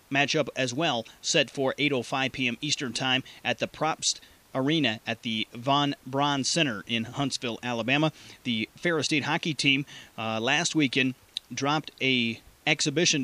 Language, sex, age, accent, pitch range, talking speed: English, male, 30-49, American, 125-155 Hz, 145 wpm